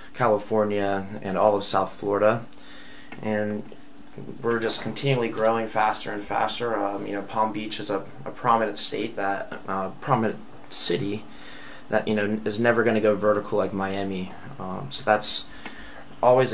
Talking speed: 155 wpm